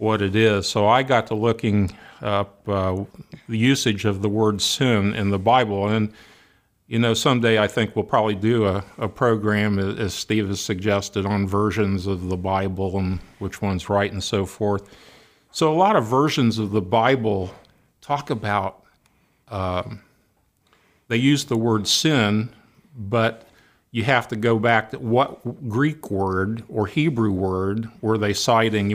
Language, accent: English, American